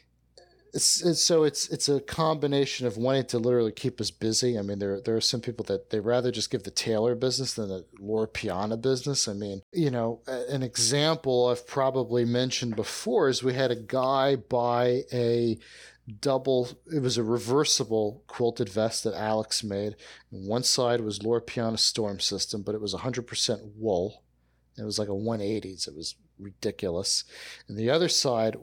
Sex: male